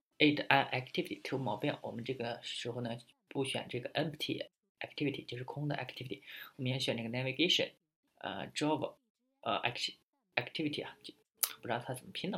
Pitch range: 120-155 Hz